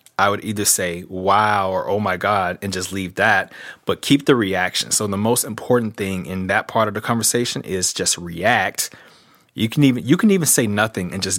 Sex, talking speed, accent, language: male, 215 wpm, American, English